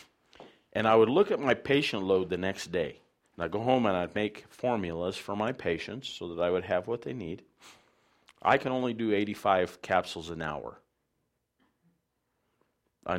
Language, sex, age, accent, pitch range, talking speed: English, male, 50-69, American, 90-120 Hz, 175 wpm